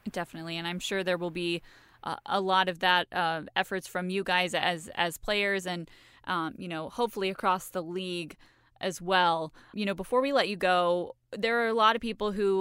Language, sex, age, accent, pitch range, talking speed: English, female, 20-39, American, 180-205 Hz, 210 wpm